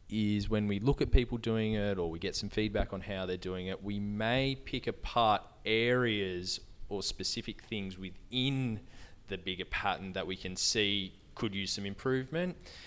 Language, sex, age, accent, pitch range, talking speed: English, male, 20-39, Australian, 95-115 Hz, 175 wpm